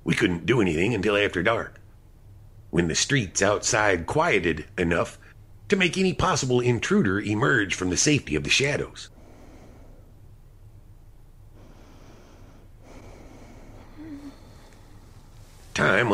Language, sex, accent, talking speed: English, male, American, 95 wpm